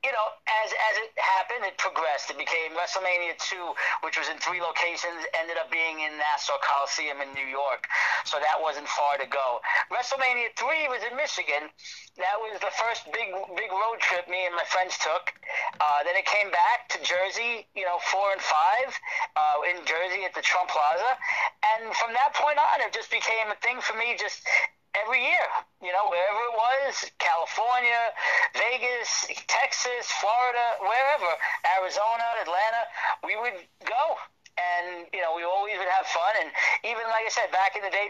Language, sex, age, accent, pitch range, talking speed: English, male, 50-69, American, 175-235 Hz, 185 wpm